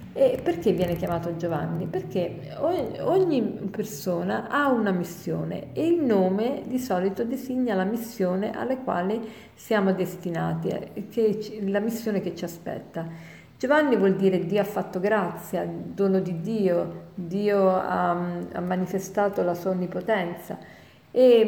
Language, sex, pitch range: Italian, female, 175-215 Hz